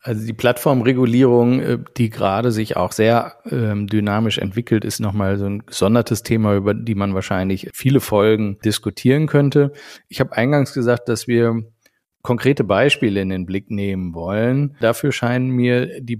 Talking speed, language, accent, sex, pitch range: 155 wpm, German, German, male, 100-120 Hz